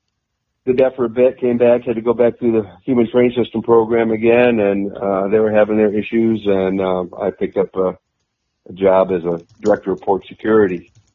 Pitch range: 95-115 Hz